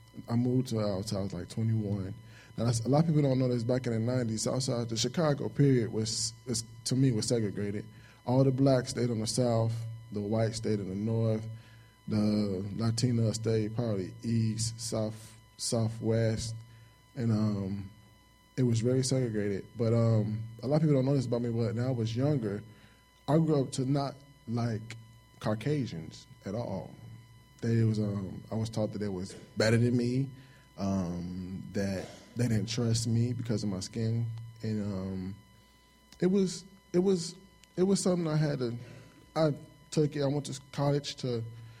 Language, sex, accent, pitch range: English, male, American, 110-130 Hz